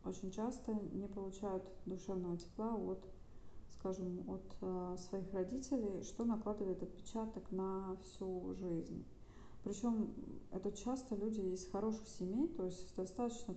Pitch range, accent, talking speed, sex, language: 180-210 Hz, native, 120 wpm, female, Russian